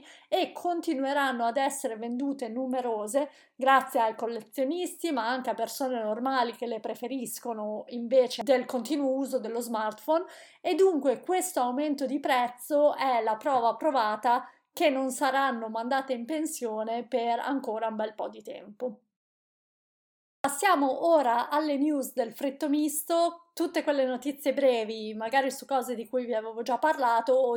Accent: native